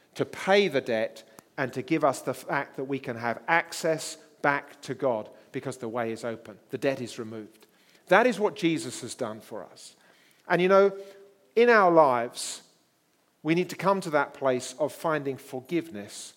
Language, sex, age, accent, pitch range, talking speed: English, male, 40-59, British, 125-170 Hz, 185 wpm